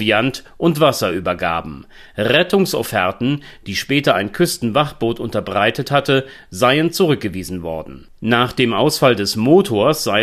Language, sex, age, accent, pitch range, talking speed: German, male, 40-59, German, 110-155 Hz, 105 wpm